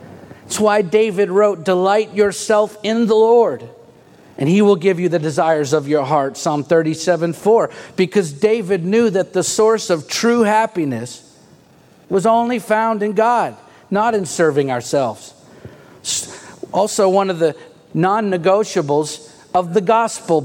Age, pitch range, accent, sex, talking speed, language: 50-69, 175-210 Hz, American, male, 140 wpm, English